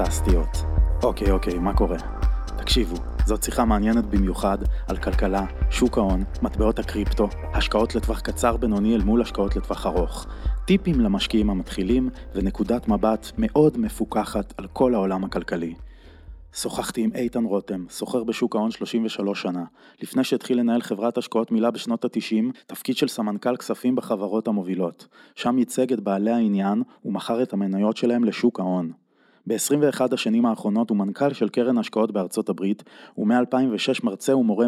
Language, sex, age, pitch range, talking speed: Hebrew, male, 20-39, 100-125 Hz, 145 wpm